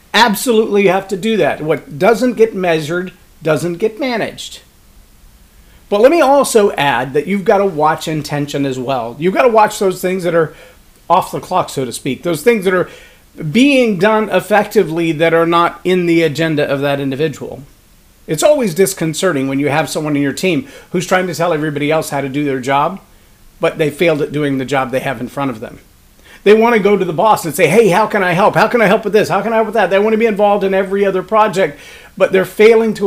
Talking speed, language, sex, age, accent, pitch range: 235 wpm, English, male, 40-59, American, 150-205 Hz